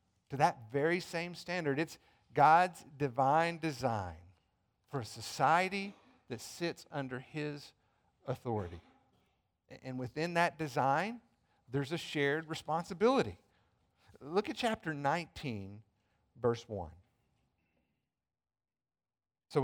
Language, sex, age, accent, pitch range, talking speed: English, male, 50-69, American, 120-170 Hz, 100 wpm